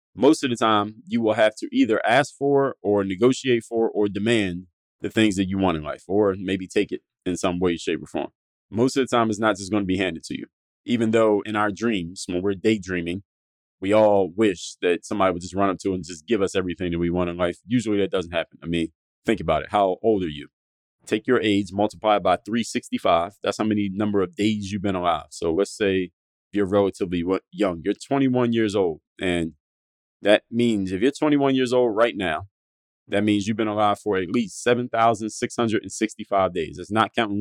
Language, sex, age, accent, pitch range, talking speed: English, male, 30-49, American, 95-115 Hz, 220 wpm